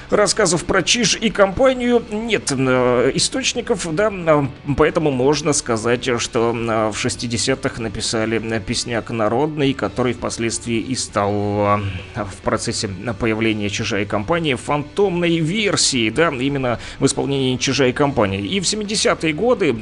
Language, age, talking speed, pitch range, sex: Russian, 30-49, 125 wpm, 120-190 Hz, male